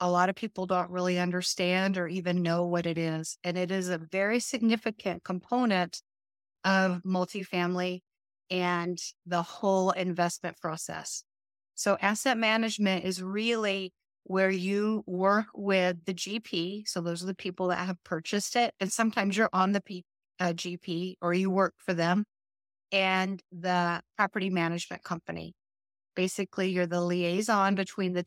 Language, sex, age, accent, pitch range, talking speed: English, female, 30-49, American, 175-200 Hz, 150 wpm